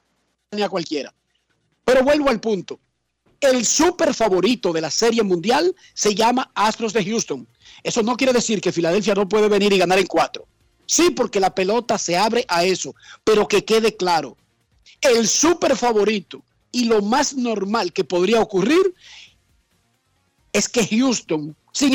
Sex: male